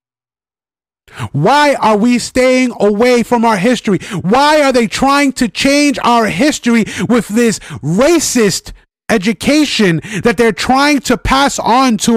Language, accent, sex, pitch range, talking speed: English, American, male, 195-250 Hz, 135 wpm